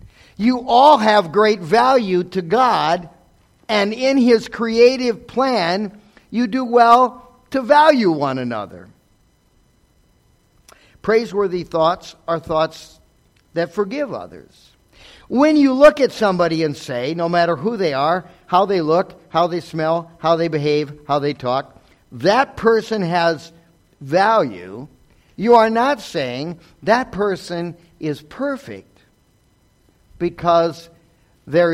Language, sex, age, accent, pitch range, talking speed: English, male, 50-69, American, 135-215 Hz, 120 wpm